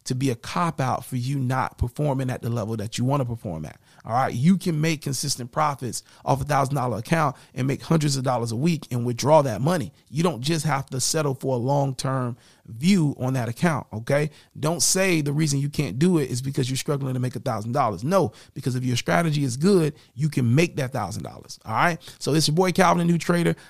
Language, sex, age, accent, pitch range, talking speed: English, male, 30-49, American, 125-160 Hz, 245 wpm